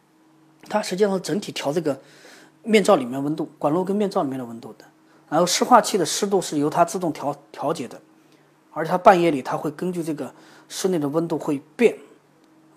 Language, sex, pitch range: Chinese, male, 160-250 Hz